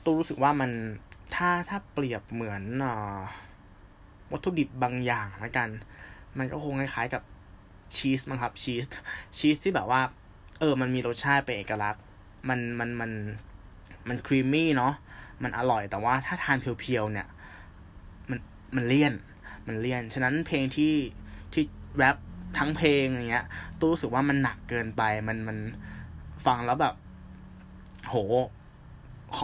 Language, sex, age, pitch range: Thai, male, 20-39, 100-135 Hz